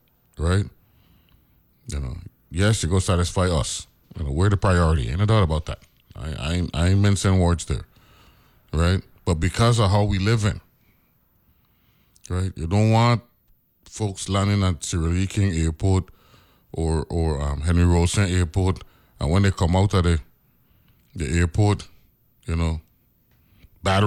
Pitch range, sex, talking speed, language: 85-105 Hz, male, 160 wpm, English